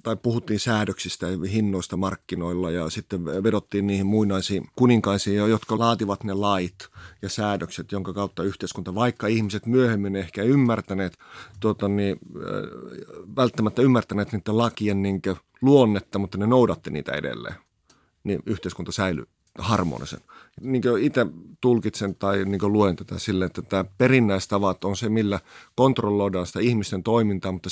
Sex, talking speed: male, 135 wpm